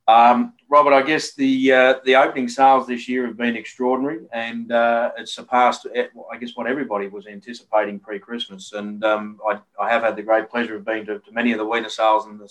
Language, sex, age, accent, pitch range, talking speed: English, male, 30-49, Australian, 105-120 Hz, 215 wpm